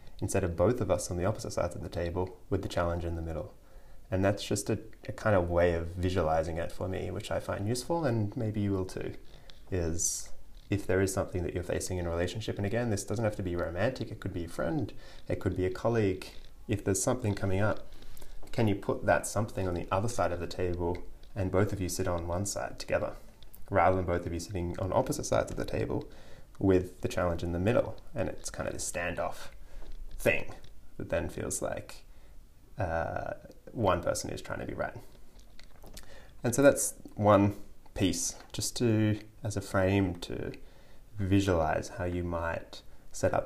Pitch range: 90-105 Hz